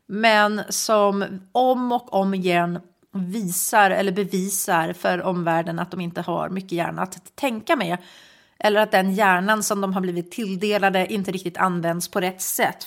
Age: 40-59